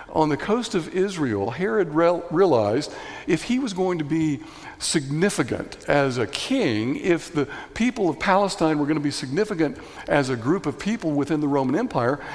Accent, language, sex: American, English, male